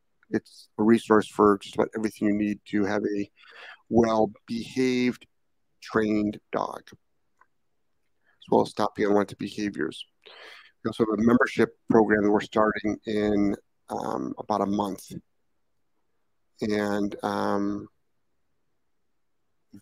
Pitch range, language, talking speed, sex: 100-110 Hz, English, 110 wpm, male